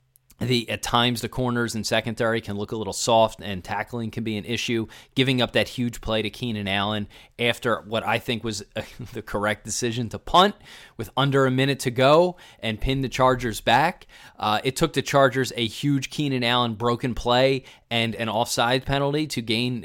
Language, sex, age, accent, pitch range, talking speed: English, male, 30-49, American, 110-130 Hz, 195 wpm